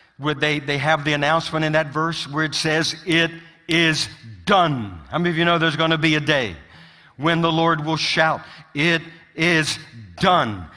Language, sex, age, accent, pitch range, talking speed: English, male, 60-79, American, 145-175 Hz, 195 wpm